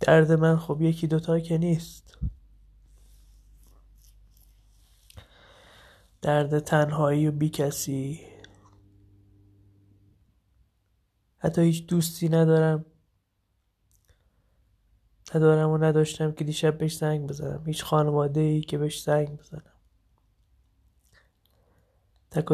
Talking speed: 85 wpm